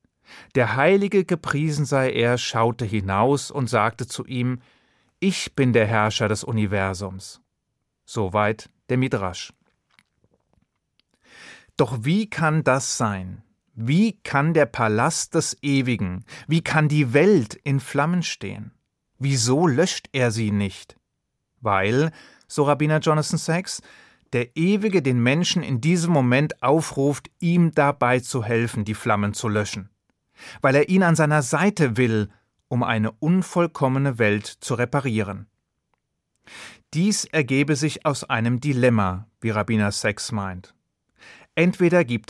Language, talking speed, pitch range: German, 125 wpm, 115-155 Hz